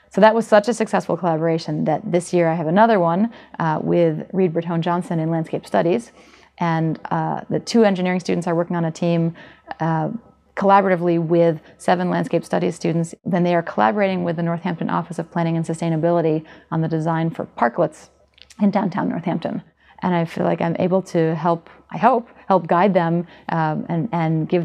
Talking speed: 185 wpm